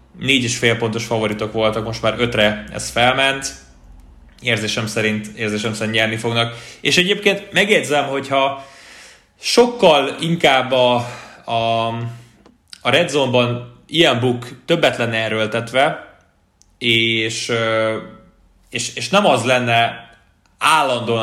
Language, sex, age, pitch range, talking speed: Hungarian, male, 20-39, 110-140 Hz, 110 wpm